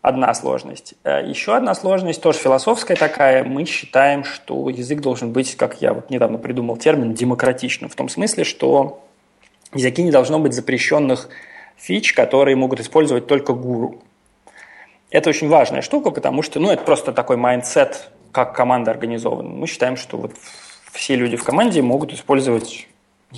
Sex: male